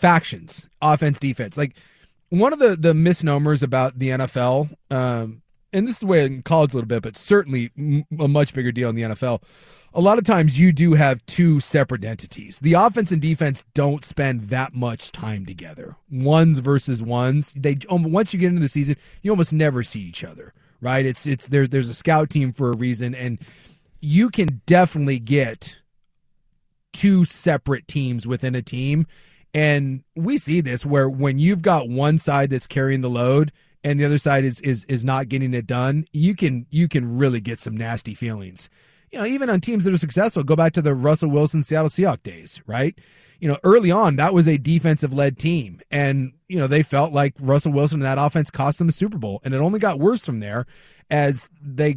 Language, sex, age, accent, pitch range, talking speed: English, male, 30-49, American, 130-160 Hz, 205 wpm